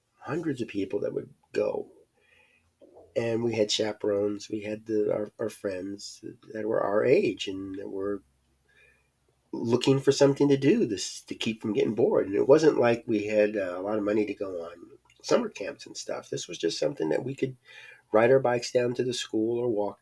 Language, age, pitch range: English, 40-59, 105-140 Hz